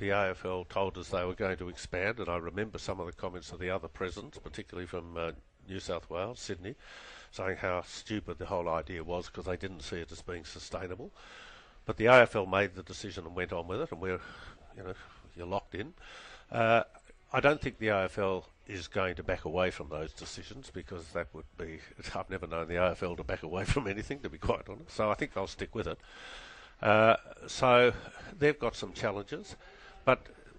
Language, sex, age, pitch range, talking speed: English, male, 60-79, 90-115 Hz, 210 wpm